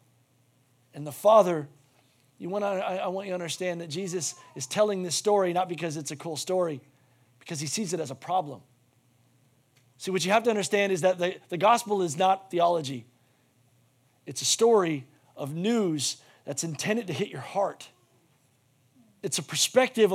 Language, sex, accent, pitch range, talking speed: English, male, American, 130-175 Hz, 175 wpm